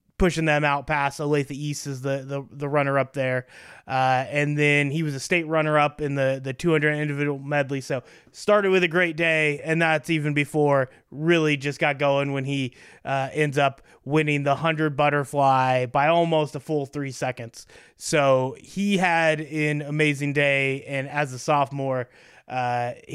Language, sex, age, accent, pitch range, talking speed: English, male, 20-39, American, 140-160 Hz, 180 wpm